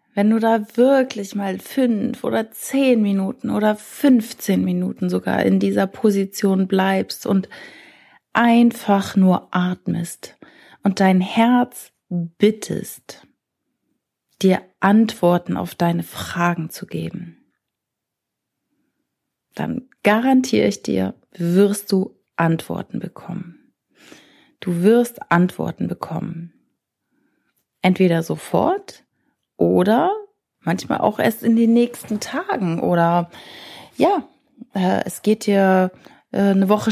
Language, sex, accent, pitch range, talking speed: German, female, German, 170-225 Hz, 100 wpm